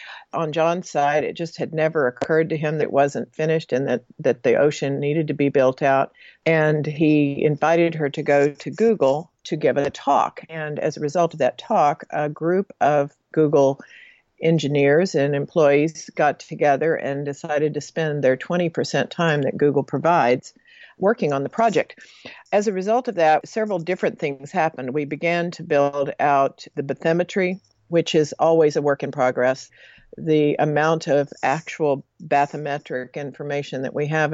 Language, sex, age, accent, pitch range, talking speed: English, female, 50-69, American, 145-165 Hz, 175 wpm